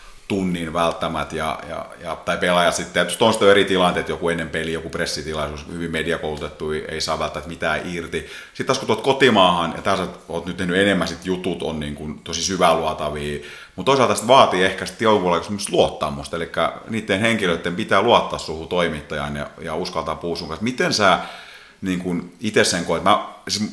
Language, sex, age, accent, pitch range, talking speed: Finnish, male, 30-49, native, 80-100 Hz, 180 wpm